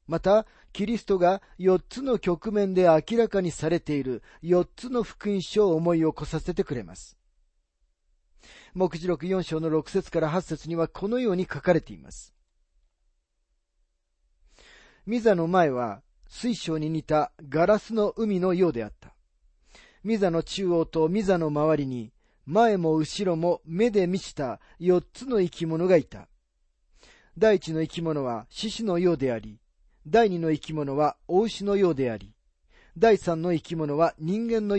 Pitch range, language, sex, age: 115-190 Hz, Japanese, male, 40-59